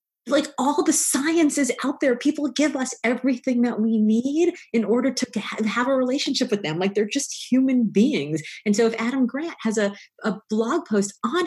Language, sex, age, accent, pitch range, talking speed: English, female, 30-49, American, 225-305 Hz, 195 wpm